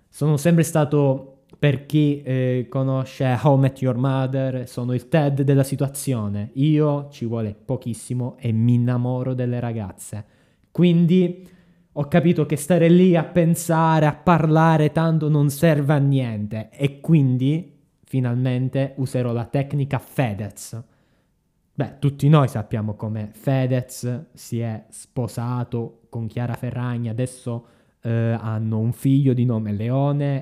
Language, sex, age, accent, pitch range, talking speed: Italian, male, 20-39, native, 115-145 Hz, 130 wpm